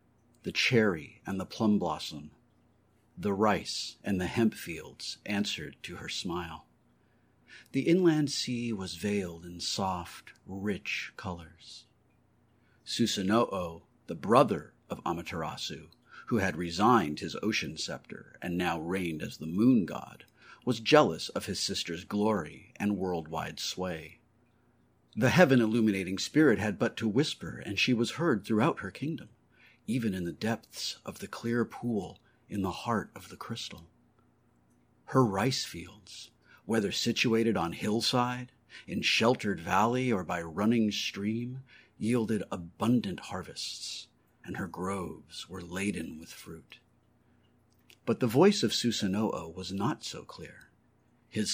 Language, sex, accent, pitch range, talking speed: English, male, American, 95-120 Hz, 135 wpm